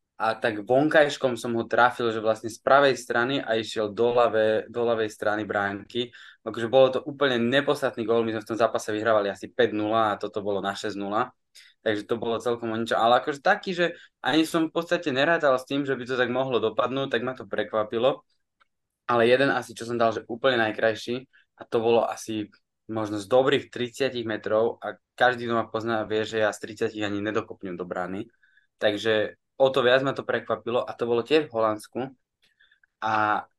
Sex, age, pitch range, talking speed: male, 20-39, 110-135 Hz, 195 wpm